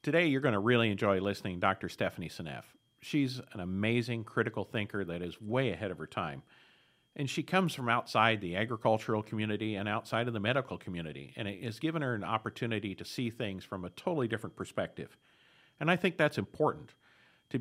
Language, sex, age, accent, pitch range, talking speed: English, male, 50-69, American, 100-130 Hz, 200 wpm